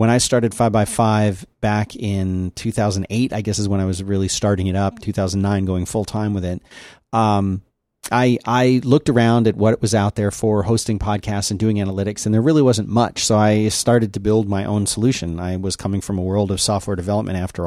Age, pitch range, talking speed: 40-59, 100-120 Hz, 220 wpm